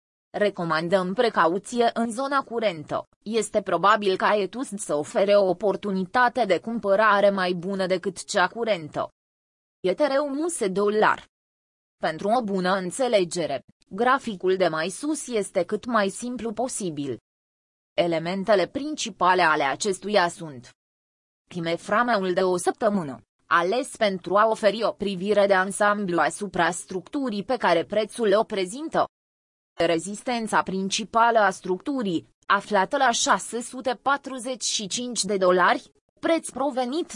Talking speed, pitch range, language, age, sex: 110 wpm, 185-235 Hz, Romanian, 20-39, female